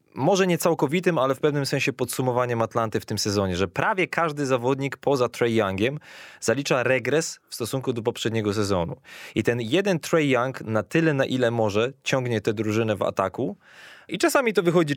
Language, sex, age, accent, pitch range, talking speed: Polish, male, 20-39, native, 115-150 Hz, 180 wpm